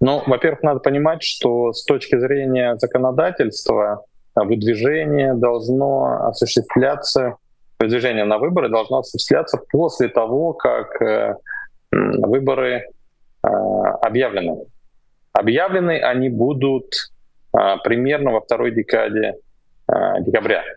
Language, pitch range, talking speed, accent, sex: Russian, 115-165 Hz, 95 wpm, native, male